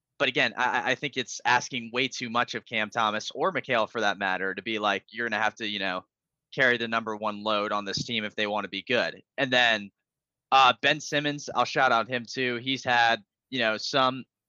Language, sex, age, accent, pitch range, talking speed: English, male, 20-39, American, 110-130 Hz, 235 wpm